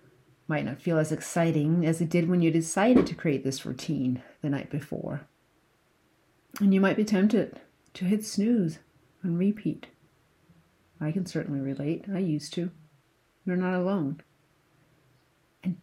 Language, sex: English, female